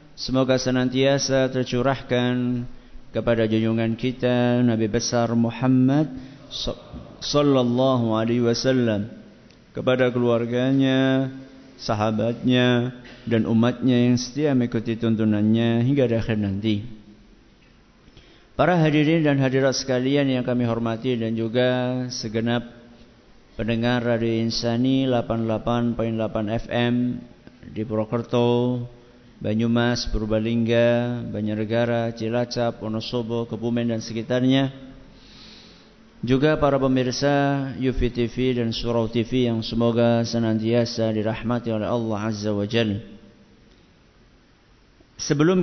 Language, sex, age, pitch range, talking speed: Malay, male, 50-69, 115-130 Hz, 90 wpm